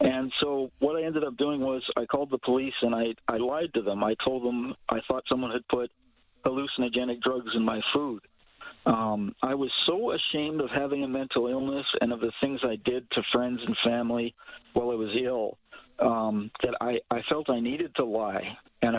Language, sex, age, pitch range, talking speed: English, male, 50-69, 120-135 Hz, 205 wpm